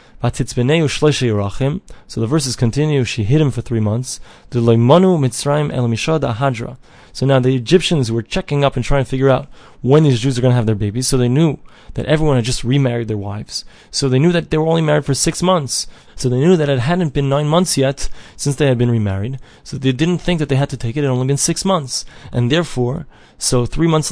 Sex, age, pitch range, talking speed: male, 20-39, 120-150 Hz, 220 wpm